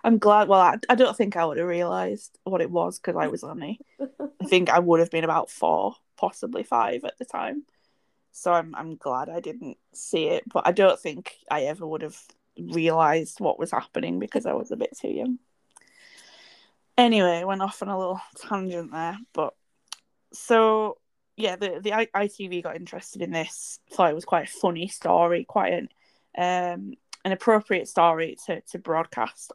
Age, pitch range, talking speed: 10-29, 175-215 Hz, 185 wpm